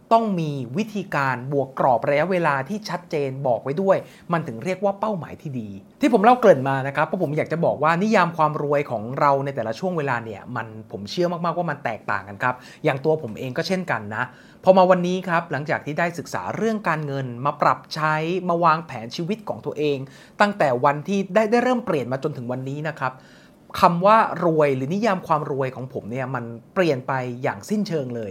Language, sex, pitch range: English, male, 125-170 Hz